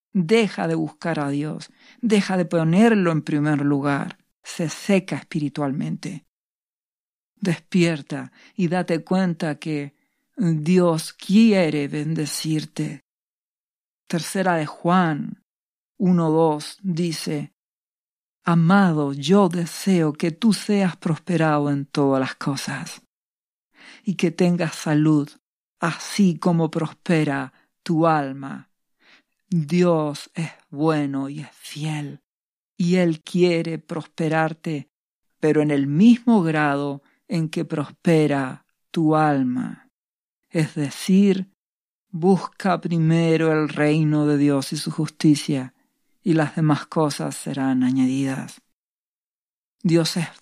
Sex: female